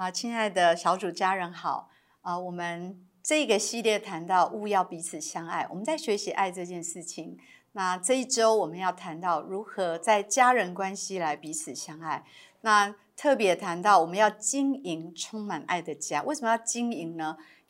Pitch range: 175-245 Hz